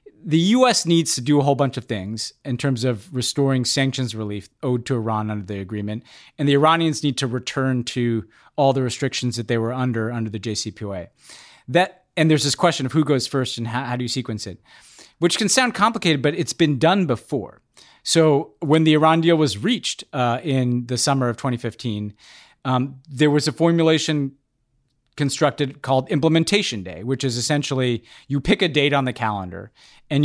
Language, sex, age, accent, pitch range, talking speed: English, male, 40-59, American, 120-155 Hz, 190 wpm